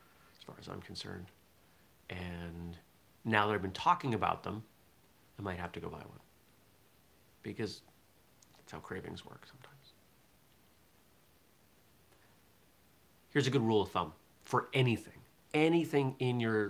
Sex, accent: male, American